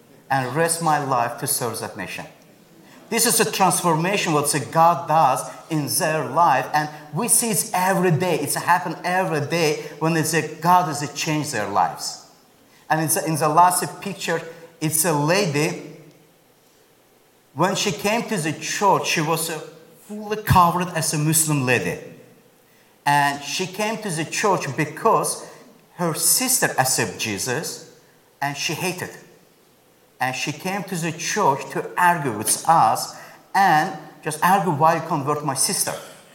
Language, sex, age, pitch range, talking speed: English, male, 50-69, 150-180 Hz, 150 wpm